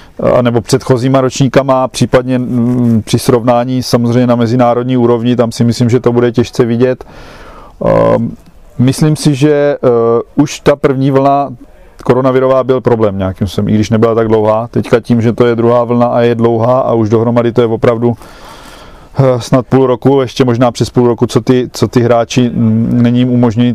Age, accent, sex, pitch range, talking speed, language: 40-59, native, male, 120-135 Hz, 175 wpm, Czech